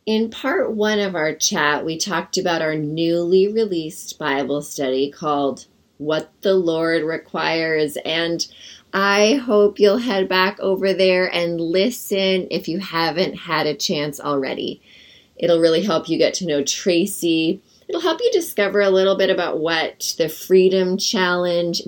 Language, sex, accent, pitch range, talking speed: English, female, American, 155-195 Hz, 155 wpm